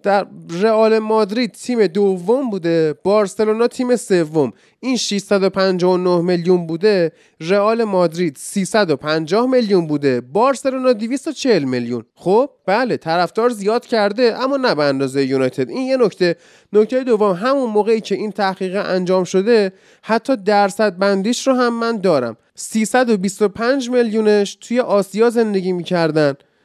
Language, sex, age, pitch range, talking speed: Persian, male, 20-39, 190-235 Hz, 125 wpm